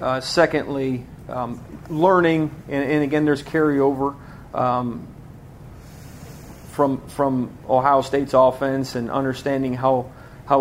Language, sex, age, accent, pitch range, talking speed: English, male, 40-59, American, 125-145 Hz, 105 wpm